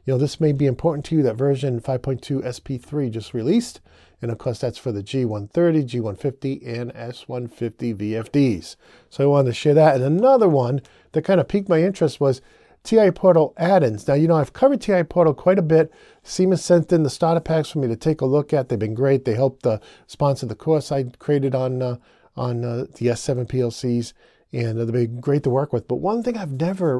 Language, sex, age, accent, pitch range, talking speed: English, male, 40-59, American, 125-170 Hz, 215 wpm